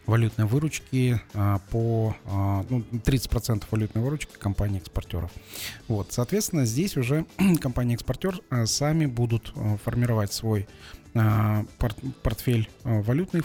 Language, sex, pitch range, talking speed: Russian, male, 110-130 Hz, 85 wpm